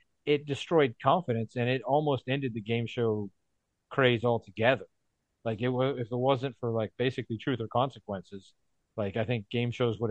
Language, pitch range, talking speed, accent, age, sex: English, 110-140 Hz, 180 wpm, American, 40-59, male